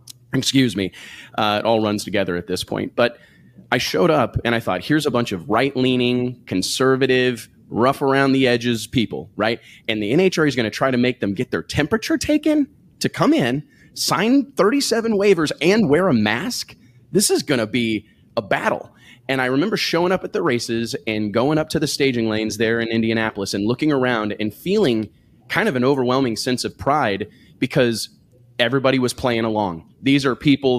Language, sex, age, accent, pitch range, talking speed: English, male, 30-49, American, 115-150 Hz, 195 wpm